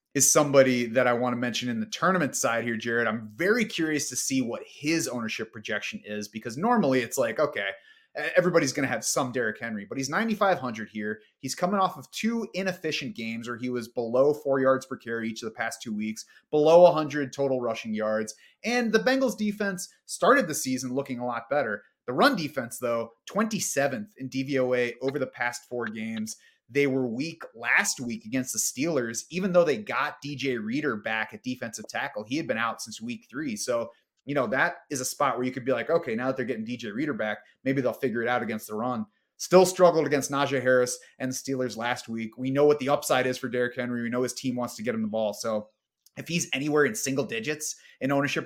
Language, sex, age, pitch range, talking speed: English, male, 30-49, 120-155 Hz, 220 wpm